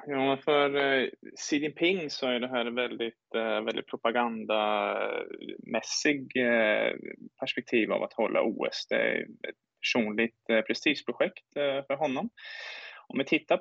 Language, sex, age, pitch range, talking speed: Swedish, male, 20-39, 115-140 Hz, 140 wpm